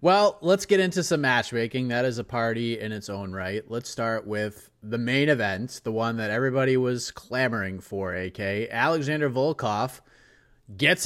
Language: English